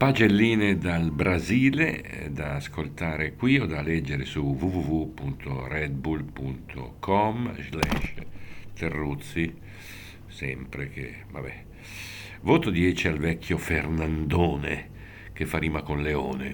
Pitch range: 70-100 Hz